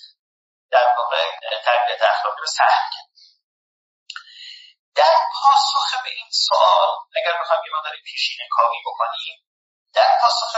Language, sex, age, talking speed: Persian, male, 40-59, 110 wpm